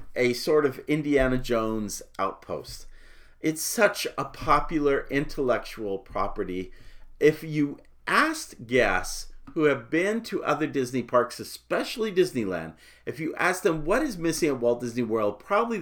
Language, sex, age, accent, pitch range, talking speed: English, male, 40-59, American, 110-150 Hz, 140 wpm